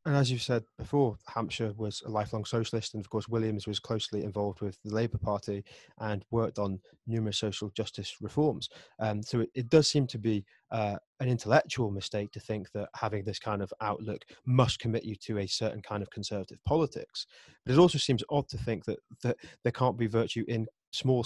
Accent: British